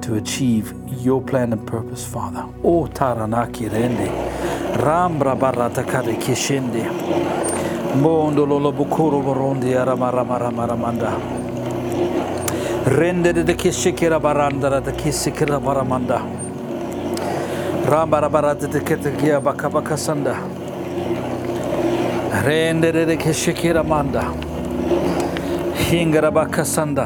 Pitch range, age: 115-145 Hz, 60-79